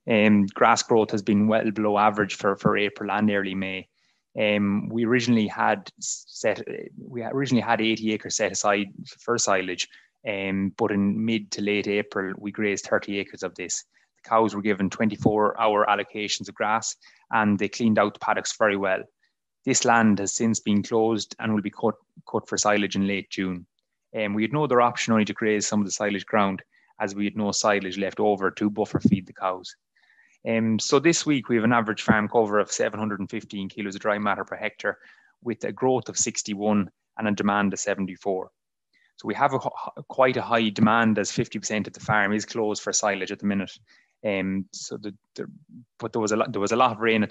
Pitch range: 100-110 Hz